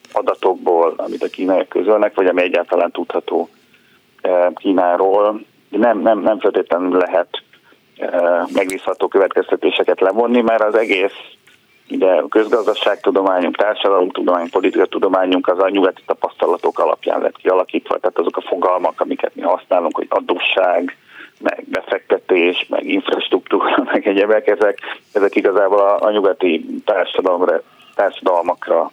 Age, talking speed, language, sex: 40-59, 115 wpm, Hungarian, male